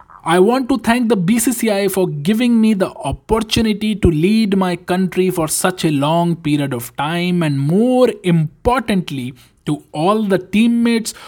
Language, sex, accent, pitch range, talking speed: Hindi, male, native, 140-195 Hz, 155 wpm